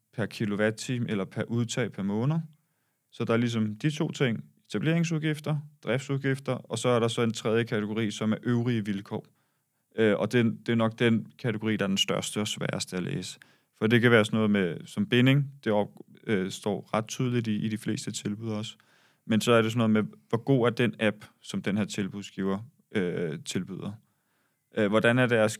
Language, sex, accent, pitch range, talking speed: Danish, male, native, 105-125 Hz, 190 wpm